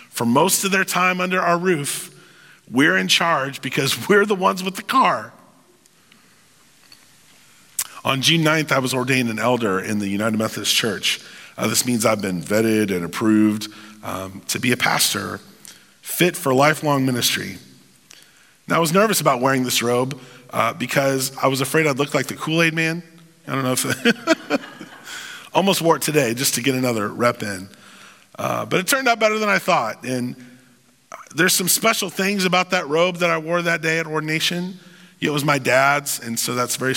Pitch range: 120-170 Hz